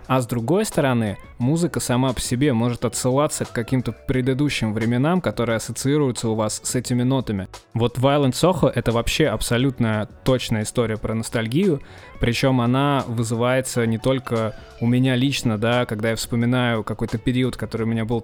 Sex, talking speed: male, 160 wpm